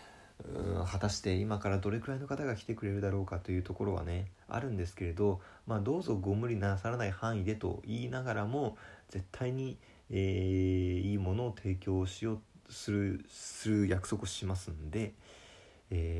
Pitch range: 90-110 Hz